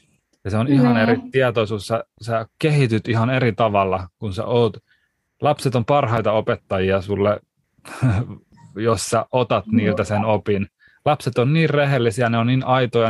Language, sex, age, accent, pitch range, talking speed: Finnish, male, 30-49, native, 105-130 Hz, 155 wpm